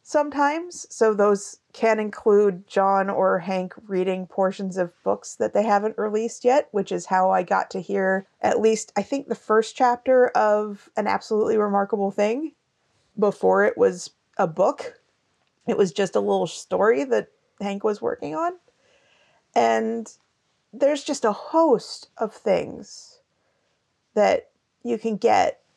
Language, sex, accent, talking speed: English, female, American, 145 wpm